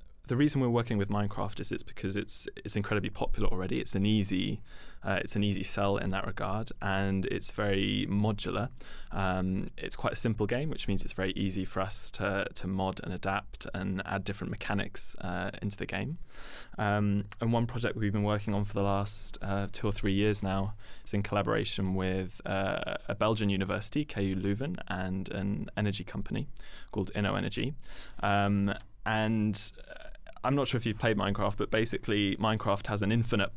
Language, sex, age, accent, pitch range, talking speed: English, male, 20-39, British, 95-105 Hz, 190 wpm